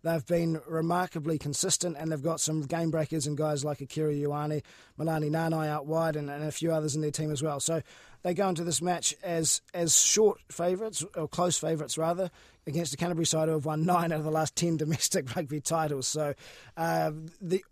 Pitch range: 150-170 Hz